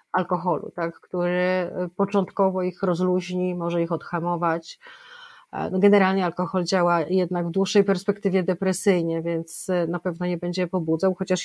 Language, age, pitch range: Polish, 30-49, 175-195 Hz